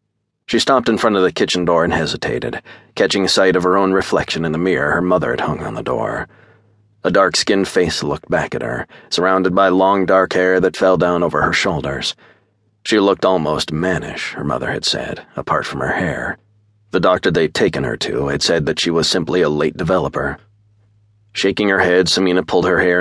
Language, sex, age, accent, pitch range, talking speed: English, male, 30-49, American, 90-110 Hz, 205 wpm